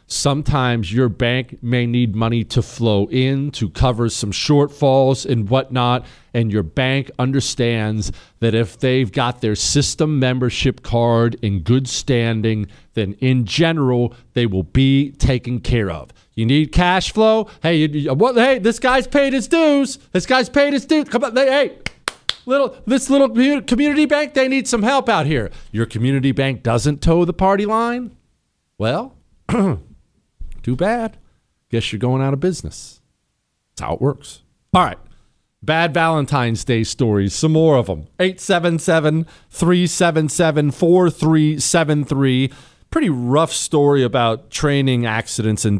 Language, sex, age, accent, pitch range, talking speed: English, male, 40-59, American, 115-165 Hz, 145 wpm